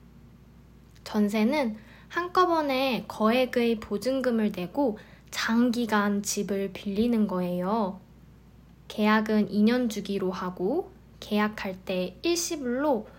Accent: native